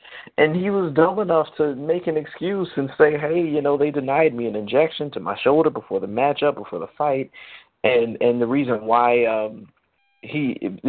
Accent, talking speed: American, 185 wpm